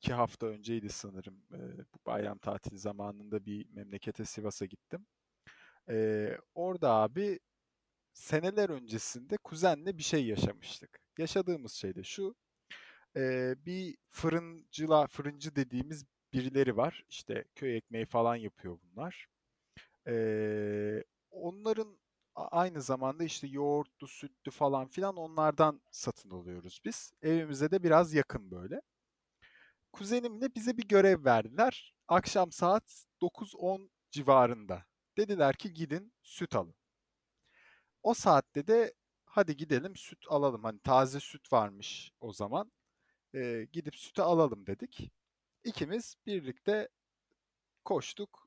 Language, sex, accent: Turkish, male, native